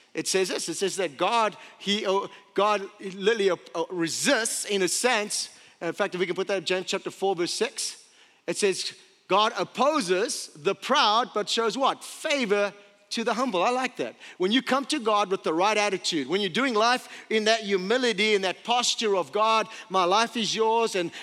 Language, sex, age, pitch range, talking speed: English, male, 40-59, 190-245 Hz, 205 wpm